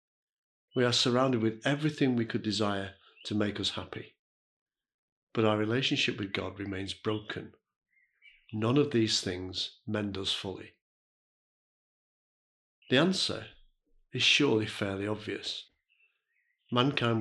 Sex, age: male, 50-69